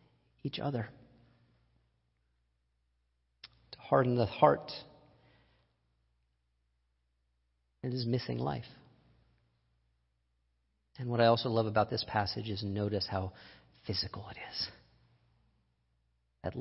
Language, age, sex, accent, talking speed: English, 40-59, male, American, 90 wpm